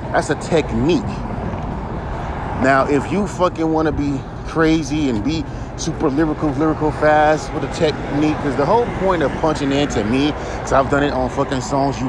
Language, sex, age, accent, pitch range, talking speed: English, male, 30-49, American, 115-145 Hz, 175 wpm